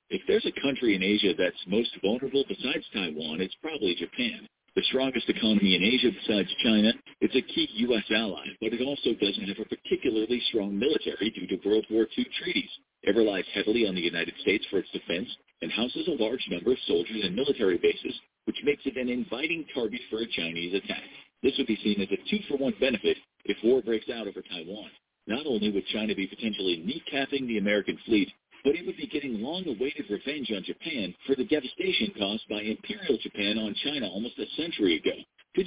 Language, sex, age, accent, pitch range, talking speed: English, male, 50-69, American, 110-165 Hz, 200 wpm